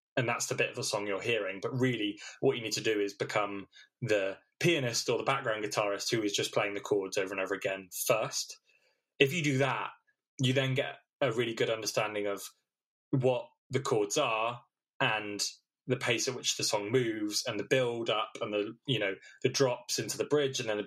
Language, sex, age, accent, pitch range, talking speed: English, male, 20-39, British, 110-140 Hz, 205 wpm